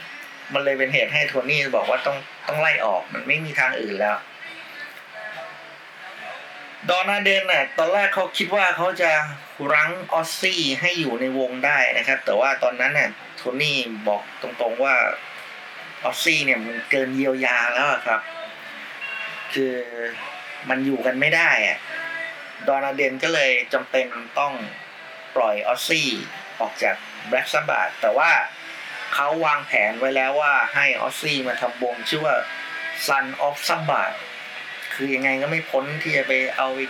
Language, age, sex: Thai, 30-49, male